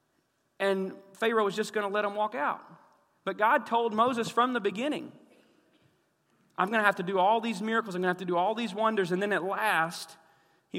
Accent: American